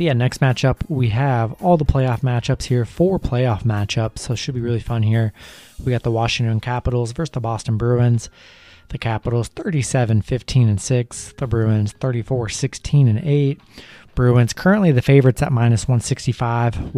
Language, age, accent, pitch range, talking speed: English, 20-39, American, 110-130 Hz, 170 wpm